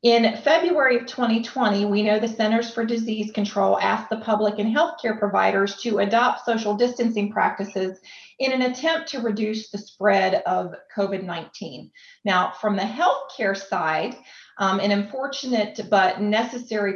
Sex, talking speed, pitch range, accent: female, 145 wpm, 200-240 Hz, American